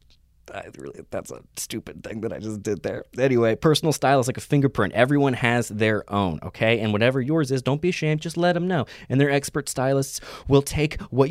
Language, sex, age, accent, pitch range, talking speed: English, male, 20-39, American, 115-155 Hz, 220 wpm